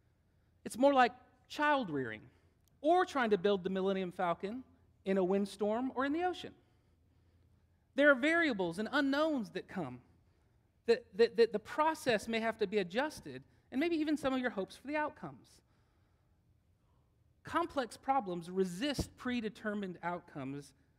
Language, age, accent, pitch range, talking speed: English, 40-59, American, 145-225 Hz, 145 wpm